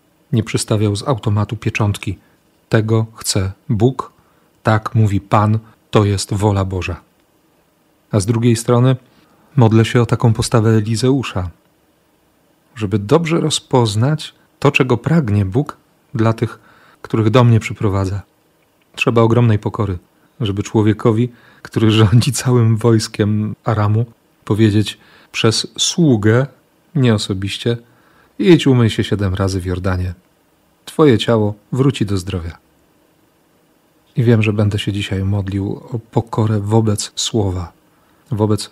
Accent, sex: native, male